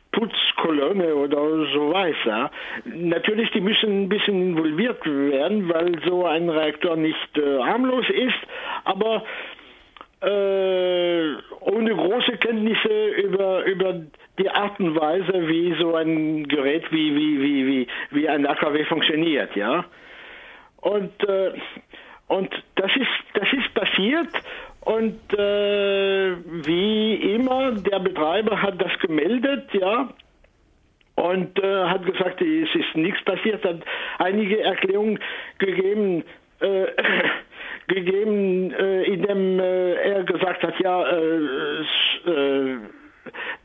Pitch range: 165-210 Hz